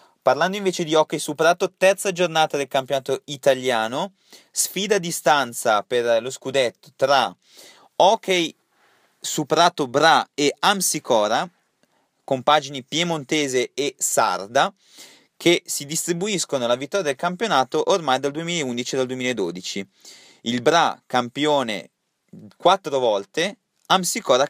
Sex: male